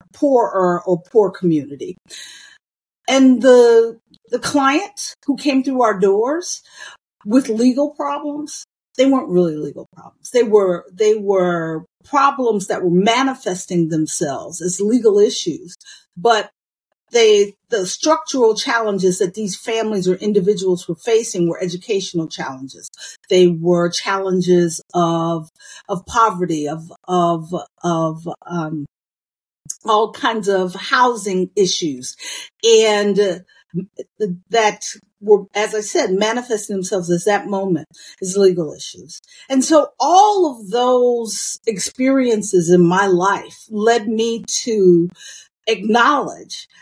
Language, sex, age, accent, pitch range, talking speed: English, female, 50-69, American, 180-240 Hz, 115 wpm